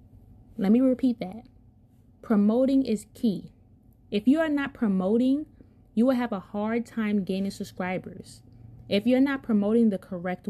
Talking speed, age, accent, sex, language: 150 wpm, 20-39, American, female, English